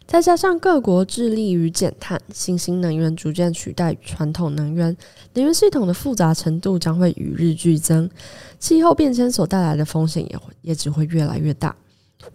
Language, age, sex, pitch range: Chinese, 20-39, female, 160-190 Hz